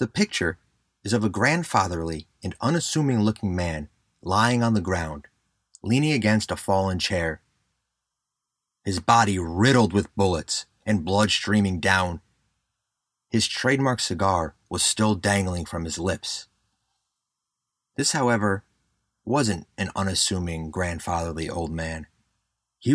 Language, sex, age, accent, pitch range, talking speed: English, male, 30-49, American, 90-110 Hz, 120 wpm